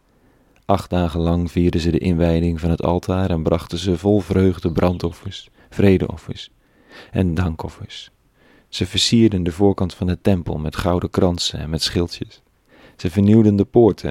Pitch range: 85-100 Hz